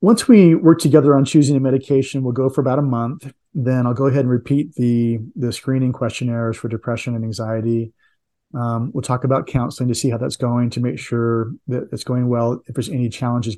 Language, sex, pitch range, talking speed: English, male, 120-135 Hz, 215 wpm